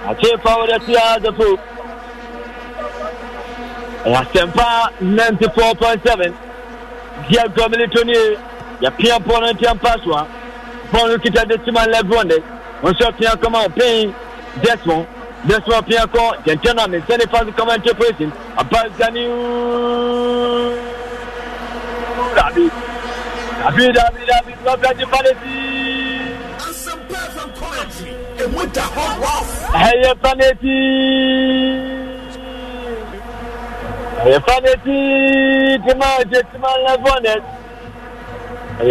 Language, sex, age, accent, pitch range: English, male, 50-69, French, 235-260 Hz